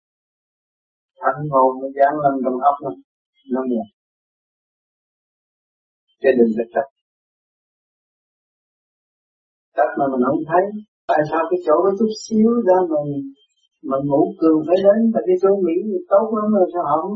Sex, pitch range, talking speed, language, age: male, 135-190 Hz, 145 wpm, Vietnamese, 50-69